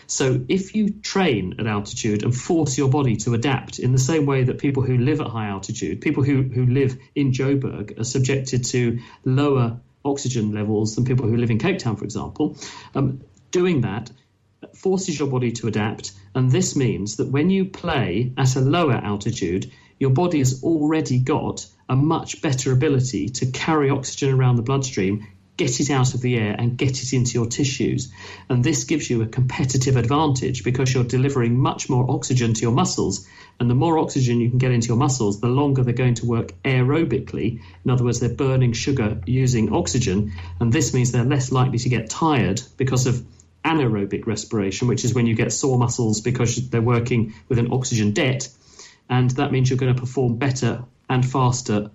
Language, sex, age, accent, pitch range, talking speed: English, male, 40-59, British, 115-135 Hz, 195 wpm